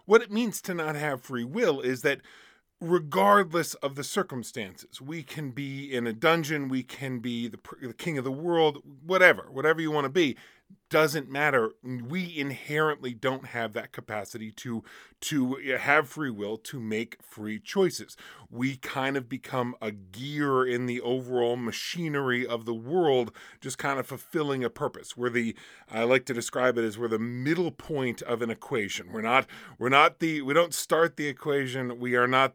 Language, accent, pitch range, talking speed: English, American, 115-155 Hz, 185 wpm